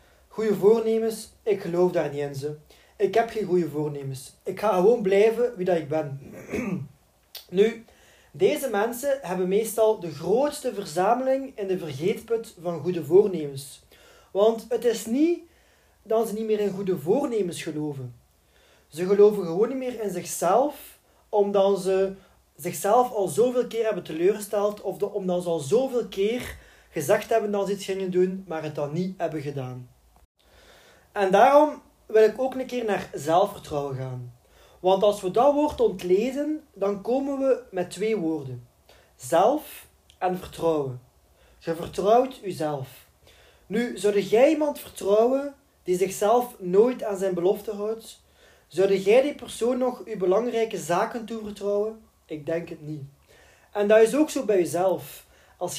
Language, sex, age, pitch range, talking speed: Dutch, male, 30-49, 175-230 Hz, 155 wpm